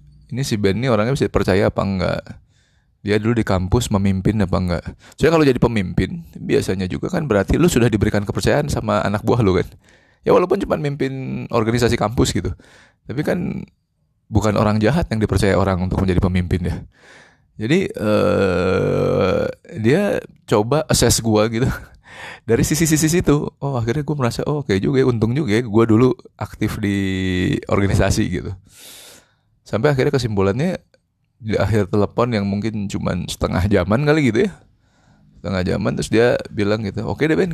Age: 20-39